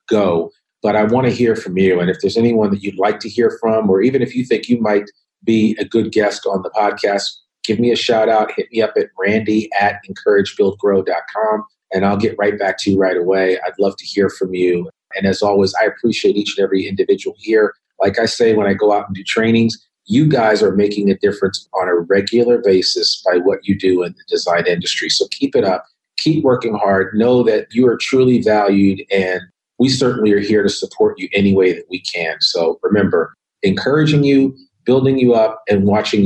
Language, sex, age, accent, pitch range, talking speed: English, male, 40-59, American, 95-130 Hz, 220 wpm